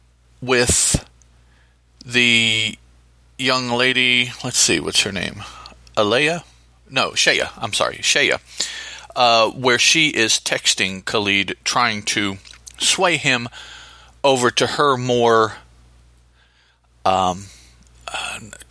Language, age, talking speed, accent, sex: English, 40-59, 100 wpm, American, male